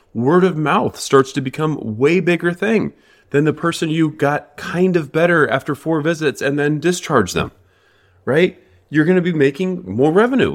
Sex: male